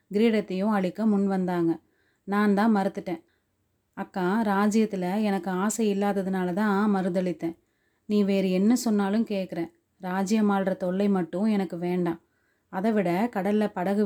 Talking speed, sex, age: 125 wpm, female, 30-49